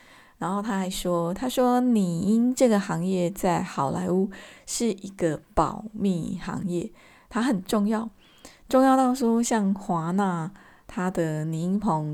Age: 20-39